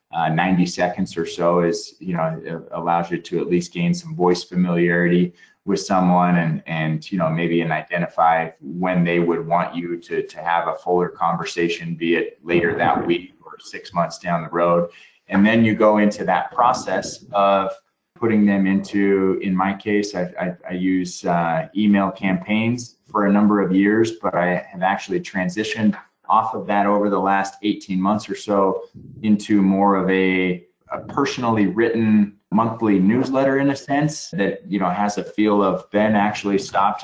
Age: 20-39